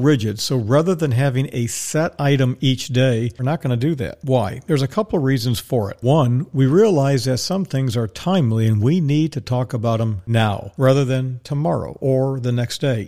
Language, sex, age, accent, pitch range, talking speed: English, male, 50-69, American, 120-150 Hz, 215 wpm